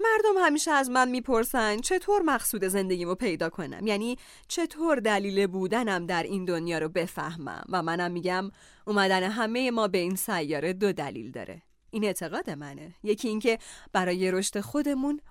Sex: female